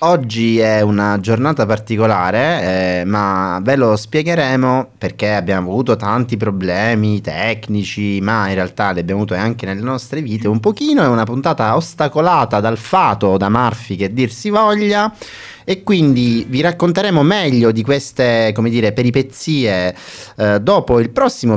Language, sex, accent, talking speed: Italian, male, native, 145 wpm